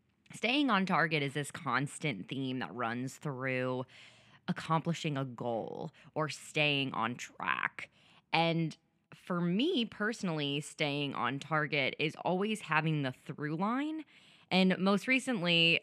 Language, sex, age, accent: English, female, 20-39, American